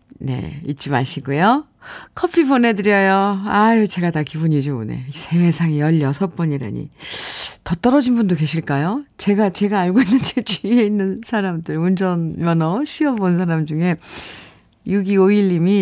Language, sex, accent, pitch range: Korean, female, native, 170-235 Hz